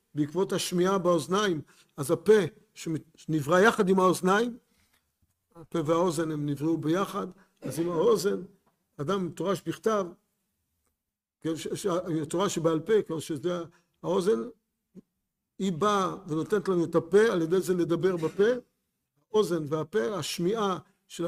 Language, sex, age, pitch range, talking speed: Hebrew, male, 50-69, 165-215 Hz, 115 wpm